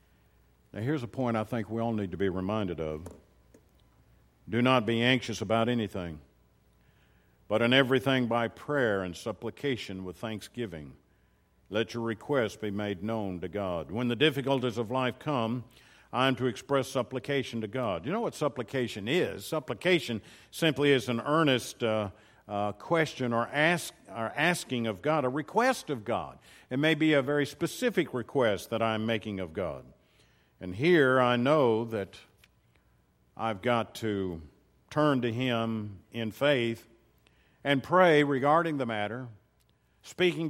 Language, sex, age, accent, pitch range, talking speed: English, male, 50-69, American, 100-145 Hz, 155 wpm